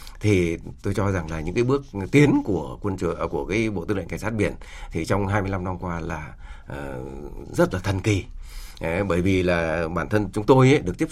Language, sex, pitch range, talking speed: Vietnamese, male, 85-115 Hz, 225 wpm